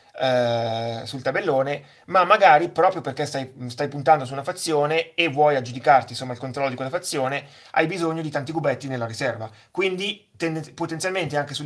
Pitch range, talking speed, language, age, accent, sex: 125-155 Hz, 165 wpm, Italian, 30-49, native, male